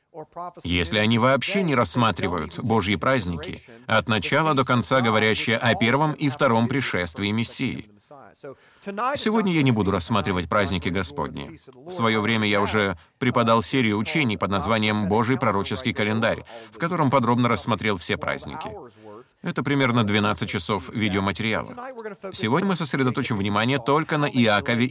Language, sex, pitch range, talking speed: Russian, male, 105-145 Hz, 135 wpm